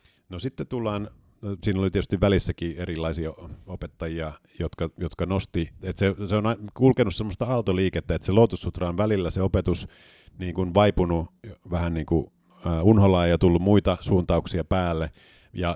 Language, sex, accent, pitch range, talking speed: Finnish, male, native, 80-100 Hz, 140 wpm